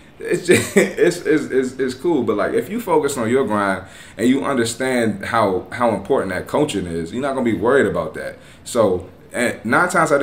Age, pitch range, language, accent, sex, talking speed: 20-39, 105-145 Hz, English, American, male, 210 wpm